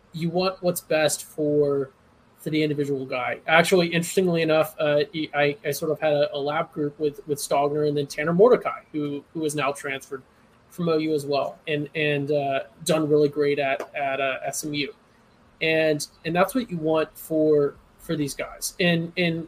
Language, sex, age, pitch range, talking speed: English, male, 20-39, 145-170 Hz, 185 wpm